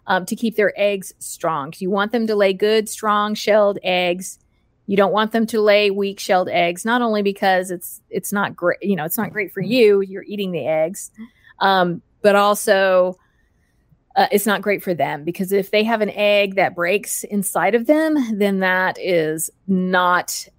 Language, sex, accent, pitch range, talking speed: English, female, American, 180-215 Hz, 190 wpm